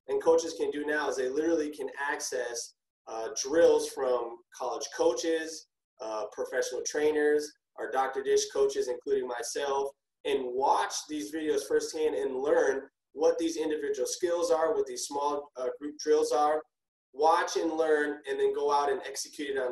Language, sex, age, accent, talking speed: English, male, 20-39, American, 165 wpm